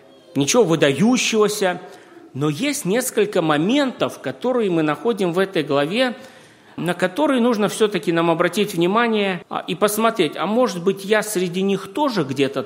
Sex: male